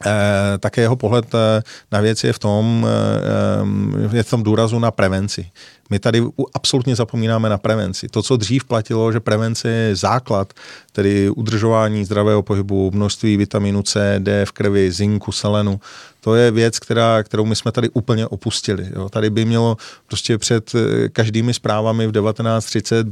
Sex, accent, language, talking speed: male, native, Czech, 145 wpm